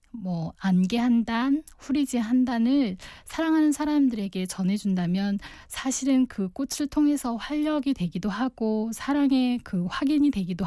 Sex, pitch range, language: female, 185-250 Hz, Korean